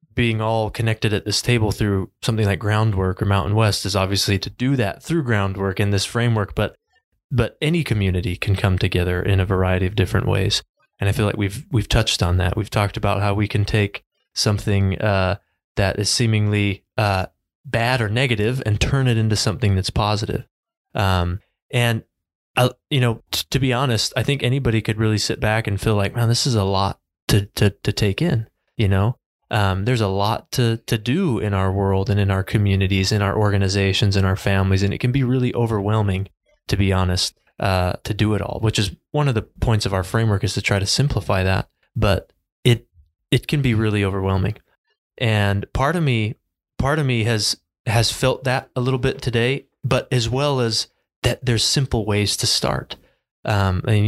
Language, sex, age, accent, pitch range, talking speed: English, male, 20-39, American, 100-120 Hz, 200 wpm